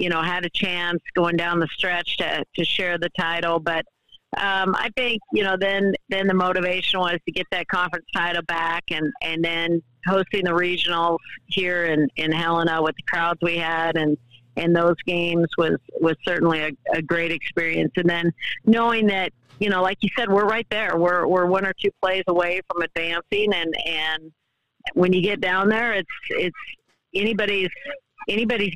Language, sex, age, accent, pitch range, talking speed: English, female, 50-69, American, 165-190 Hz, 190 wpm